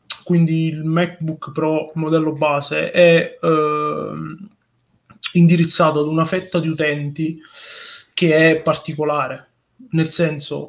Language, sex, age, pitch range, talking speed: Italian, male, 20-39, 155-175 Hz, 105 wpm